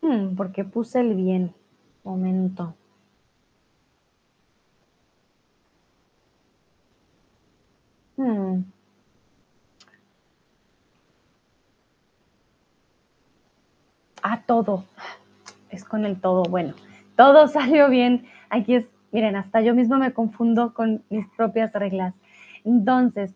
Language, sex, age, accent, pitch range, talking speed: Spanish, female, 20-39, Mexican, 215-305 Hz, 75 wpm